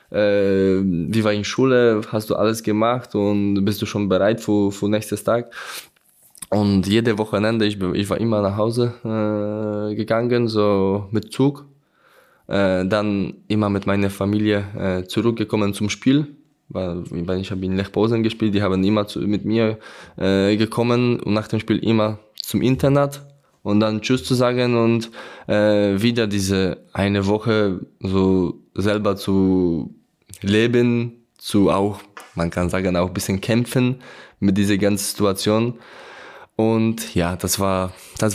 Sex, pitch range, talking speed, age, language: male, 95-115 Hz, 150 wpm, 20-39, German